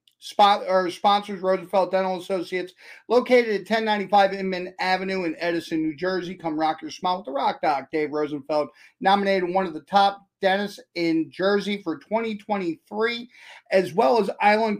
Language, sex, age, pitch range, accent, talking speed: English, male, 40-59, 170-210 Hz, American, 160 wpm